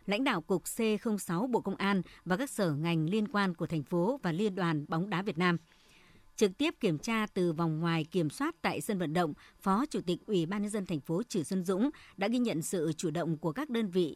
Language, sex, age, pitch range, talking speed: Vietnamese, male, 60-79, 170-215 Hz, 245 wpm